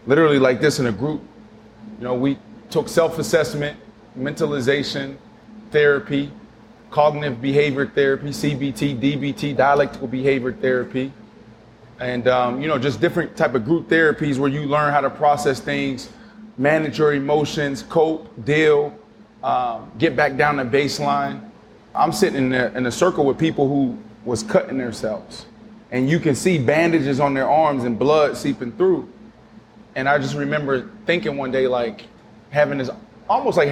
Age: 30-49